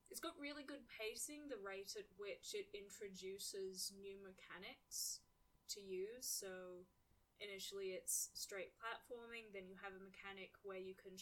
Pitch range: 190-240 Hz